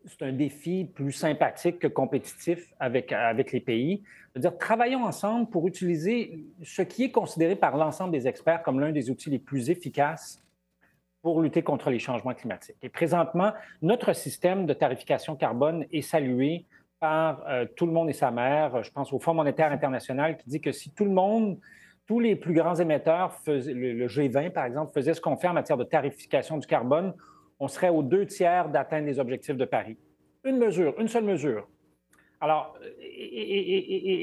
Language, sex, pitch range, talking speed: French, male, 140-195 Hz, 180 wpm